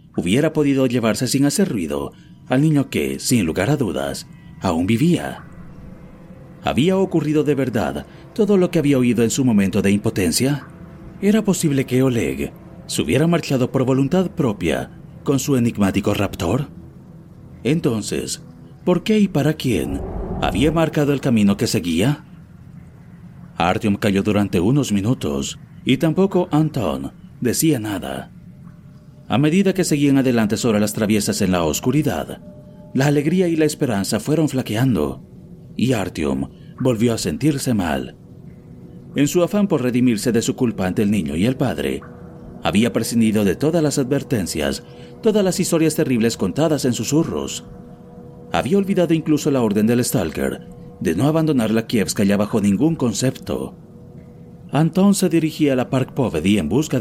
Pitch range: 110-160 Hz